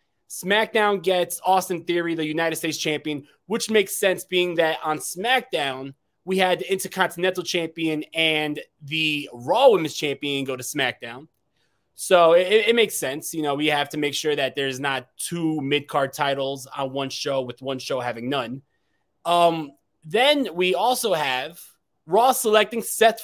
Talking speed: 160 wpm